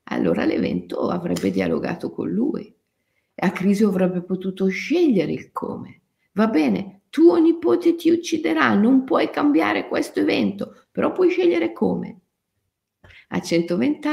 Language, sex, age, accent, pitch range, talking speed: Italian, female, 50-69, native, 175-255 Hz, 130 wpm